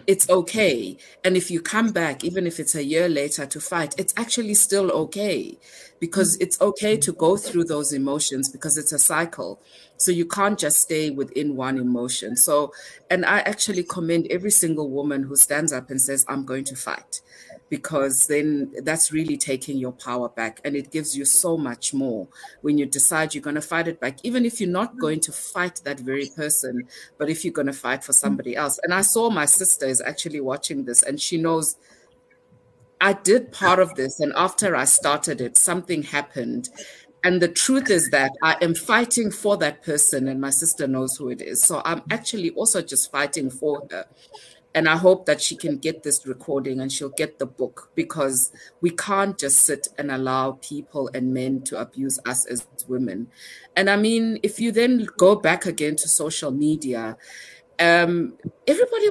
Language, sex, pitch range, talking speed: English, female, 140-190 Hz, 195 wpm